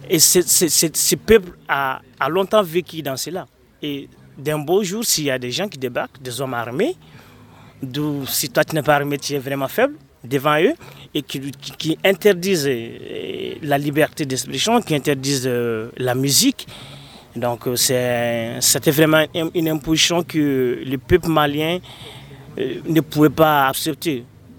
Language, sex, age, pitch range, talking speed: French, male, 30-49, 135-165 Hz, 160 wpm